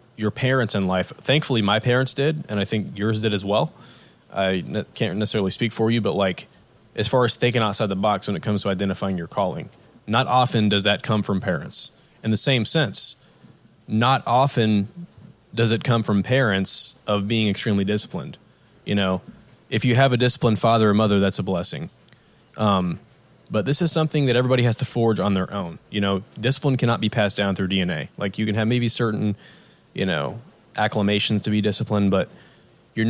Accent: American